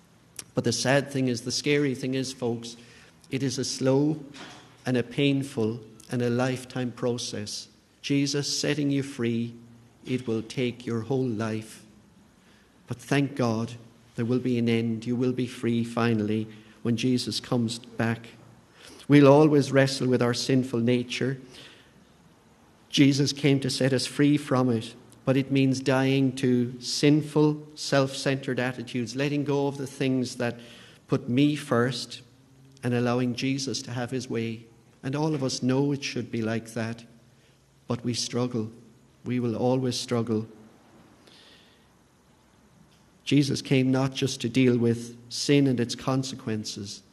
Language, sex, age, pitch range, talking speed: English, male, 50-69, 115-135 Hz, 145 wpm